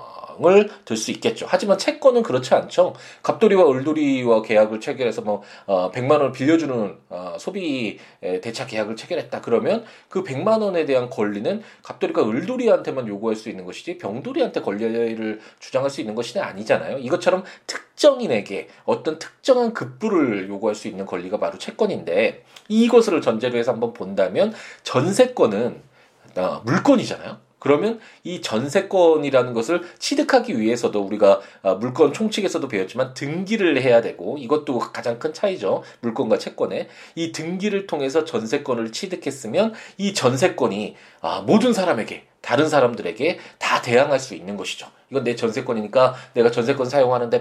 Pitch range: 115-190 Hz